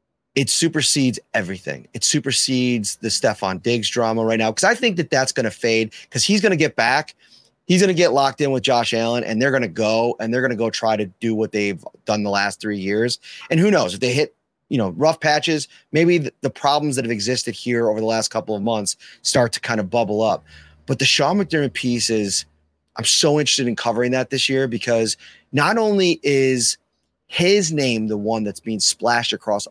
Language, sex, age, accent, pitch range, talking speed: English, male, 30-49, American, 110-160 Hz, 220 wpm